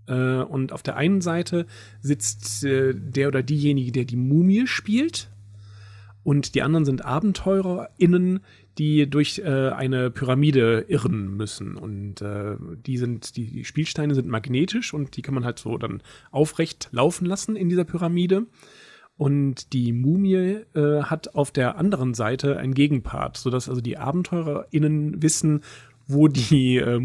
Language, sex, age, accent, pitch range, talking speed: German, male, 40-59, German, 120-155 Hz, 140 wpm